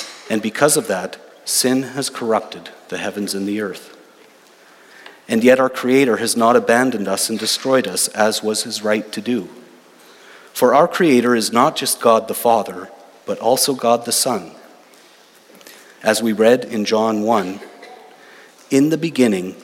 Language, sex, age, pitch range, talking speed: English, male, 40-59, 105-135 Hz, 160 wpm